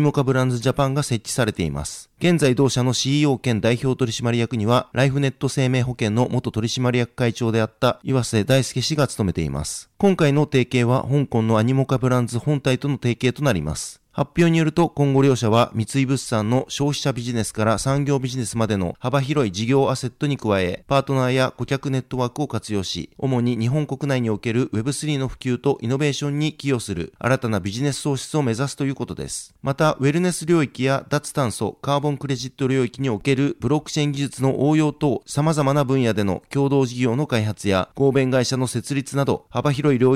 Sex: male